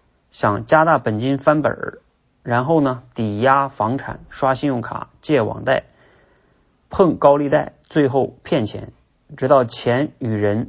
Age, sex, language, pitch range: 30-49, male, Chinese, 110-135 Hz